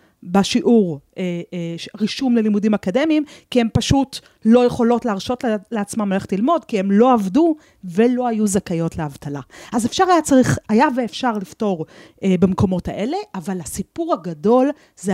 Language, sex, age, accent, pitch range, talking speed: Hebrew, female, 30-49, native, 185-245 Hz, 135 wpm